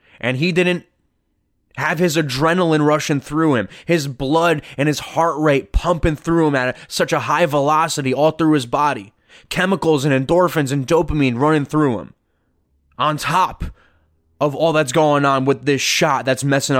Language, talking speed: English, 170 wpm